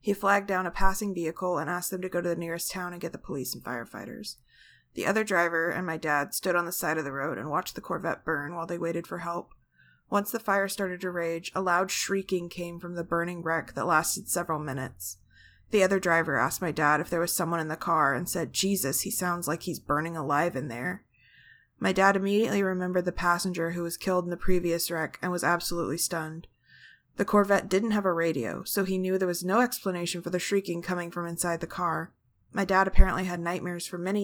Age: 20-39